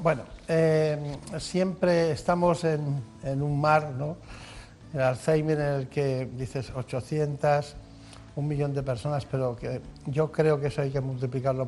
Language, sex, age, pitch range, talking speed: Spanish, male, 60-79, 135-175 Hz, 150 wpm